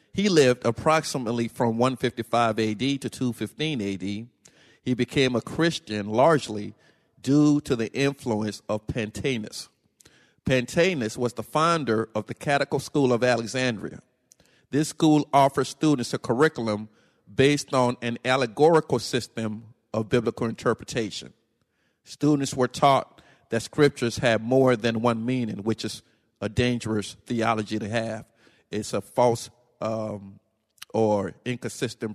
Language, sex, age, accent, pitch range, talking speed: English, male, 50-69, American, 110-135 Hz, 125 wpm